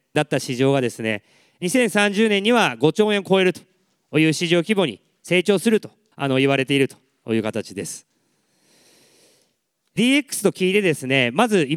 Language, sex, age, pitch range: Japanese, male, 40-59, 140-210 Hz